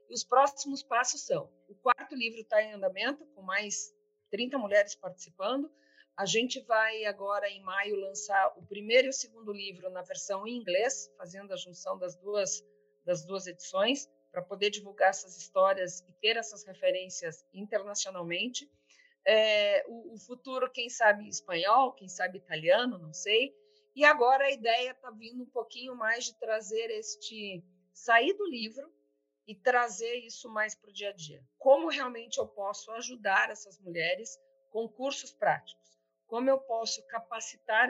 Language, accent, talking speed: Portuguese, Brazilian, 160 wpm